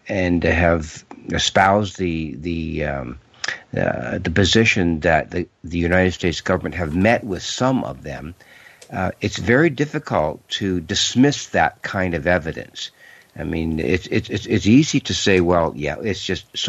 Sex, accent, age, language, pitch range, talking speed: male, American, 60-79, English, 85-110 Hz, 160 wpm